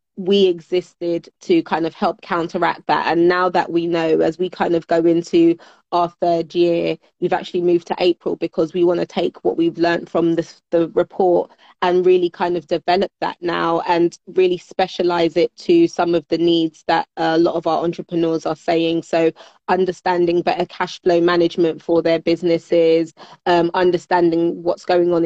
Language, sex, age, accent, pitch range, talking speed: English, female, 20-39, British, 165-180 Hz, 185 wpm